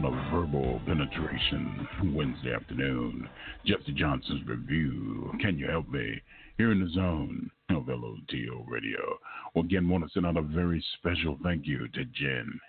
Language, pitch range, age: English, 75-90 Hz, 50-69